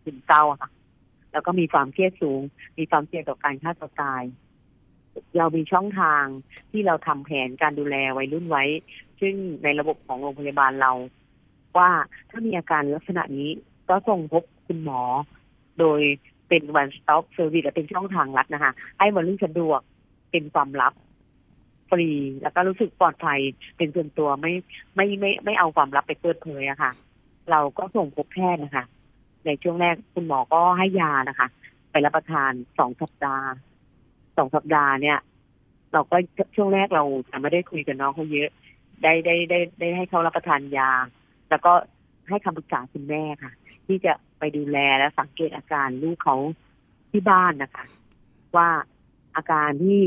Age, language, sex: 30-49, Thai, female